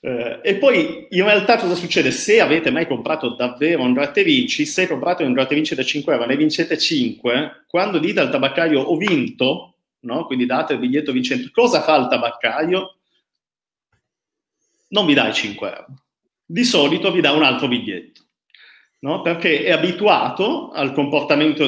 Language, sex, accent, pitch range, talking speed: Italian, male, native, 125-185 Hz, 160 wpm